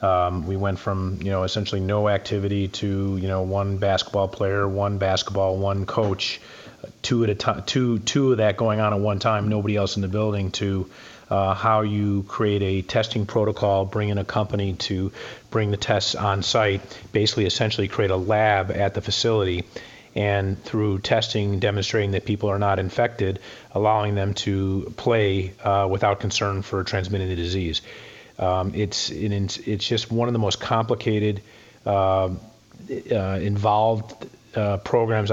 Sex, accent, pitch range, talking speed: male, American, 95-110 Hz, 165 wpm